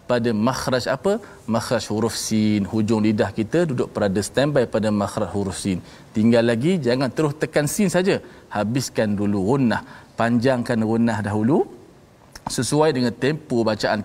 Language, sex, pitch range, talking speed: Malayalam, male, 110-180 Hz, 145 wpm